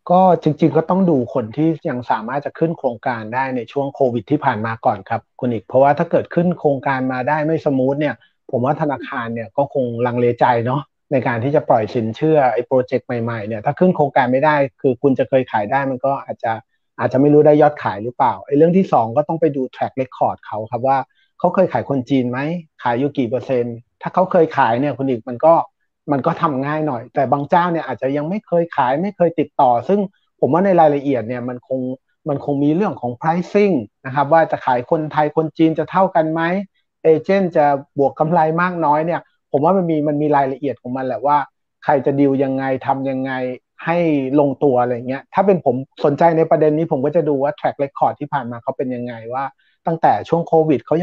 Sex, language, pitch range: male, Thai, 130-160 Hz